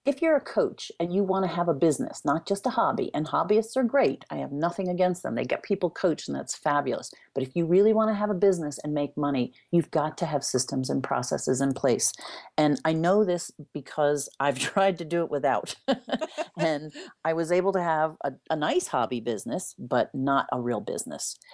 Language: English